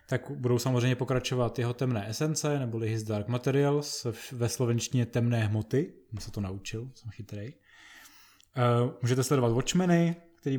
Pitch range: 110-130 Hz